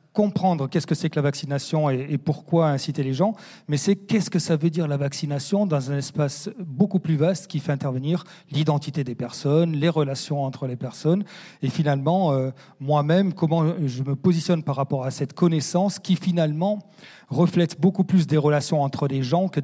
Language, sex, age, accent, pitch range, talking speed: French, male, 40-59, French, 135-165 Hz, 190 wpm